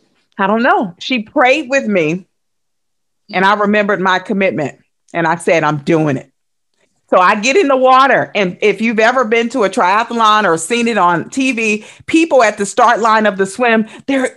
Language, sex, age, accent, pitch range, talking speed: English, female, 50-69, American, 195-270 Hz, 190 wpm